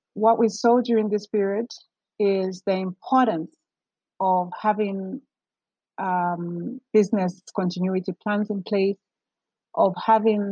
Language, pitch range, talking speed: English, 185-210 Hz, 110 wpm